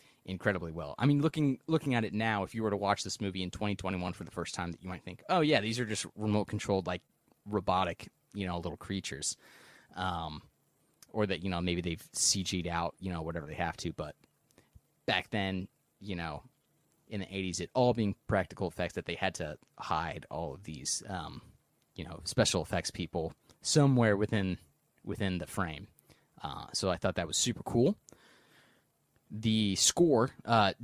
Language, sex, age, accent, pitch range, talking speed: English, male, 30-49, American, 95-120 Hz, 190 wpm